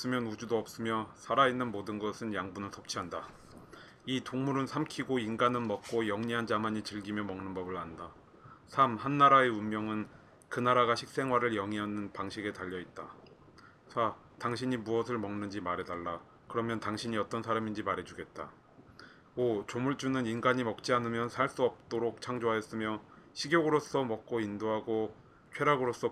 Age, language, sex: 30-49, Korean, male